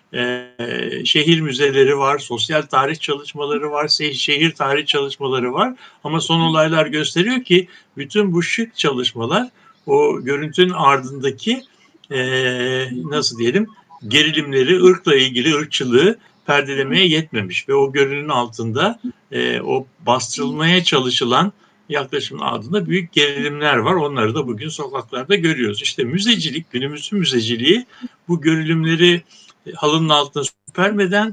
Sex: male